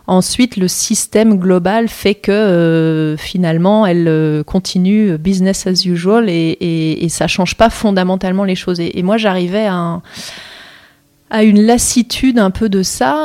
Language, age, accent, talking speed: French, 30-49, French, 170 wpm